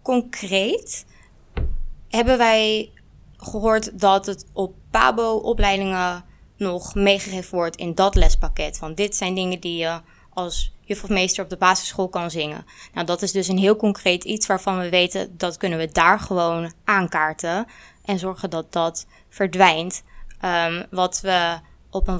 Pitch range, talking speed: 180-210 Hz, 150 wpm